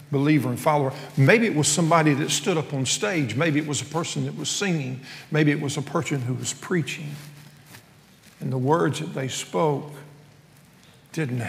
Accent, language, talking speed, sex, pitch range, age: American, English, 185 wpm, male, 135-160 Hz, 50-69